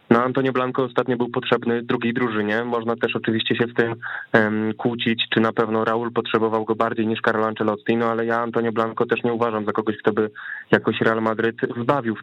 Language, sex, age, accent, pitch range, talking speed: Polish, male, 20-39, native, 115-130 Hz, 210 wpm